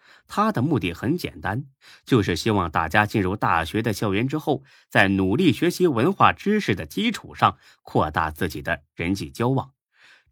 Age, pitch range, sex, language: 30-49, 95-145 Hz, male, Chinese